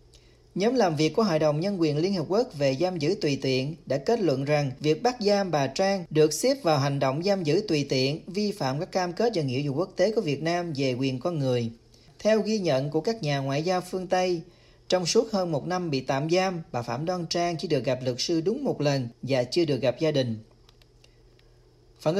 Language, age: Vietnamese, 40-59